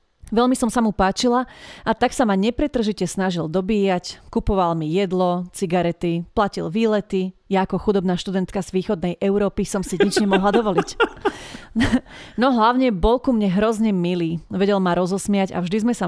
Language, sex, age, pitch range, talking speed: Slovak, female, 30-49, 180-220 Hz, 165 wpm